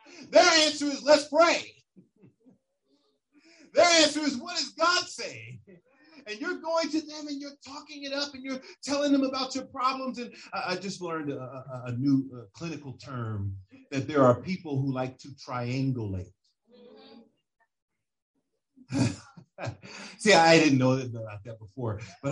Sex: male